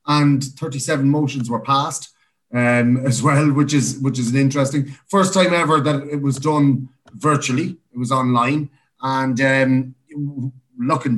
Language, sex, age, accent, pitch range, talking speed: English, male, 30-49, Irish, 120-145 Hz, 150 wpm